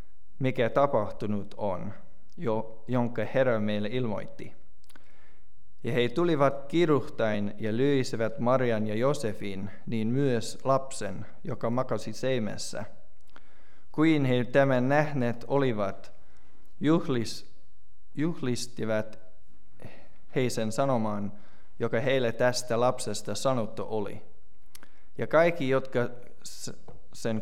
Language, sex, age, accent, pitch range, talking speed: English, male, 20-39, Finnish, 105-130 Hz, 90 wpm